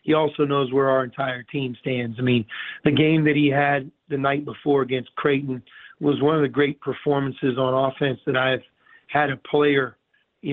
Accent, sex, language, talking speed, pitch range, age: American, male, English, 195 wpm, 135-150 Hz, 40-59